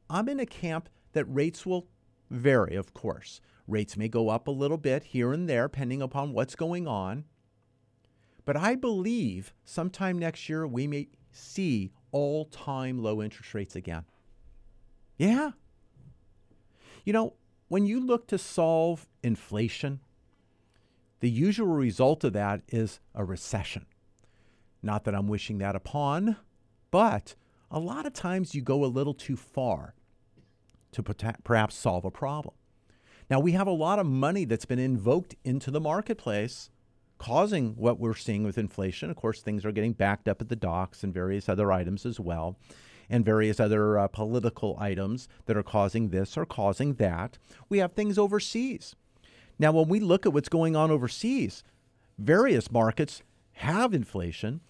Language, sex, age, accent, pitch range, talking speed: English, male, 50-69, American, 105-155 Hz, 155 wpm